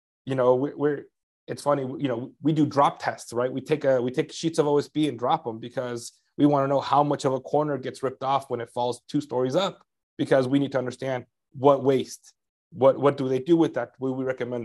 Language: English